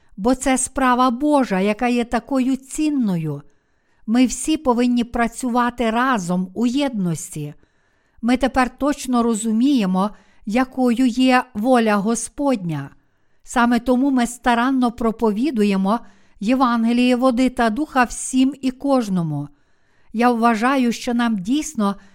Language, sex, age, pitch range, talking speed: Ukrainian, female, 50-69, 220-255 Hz, 110 wpm